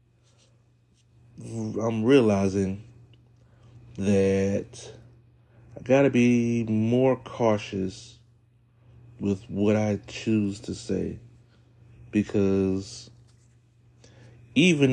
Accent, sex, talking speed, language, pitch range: American, male, 65 wpm, English, 110-120 Hz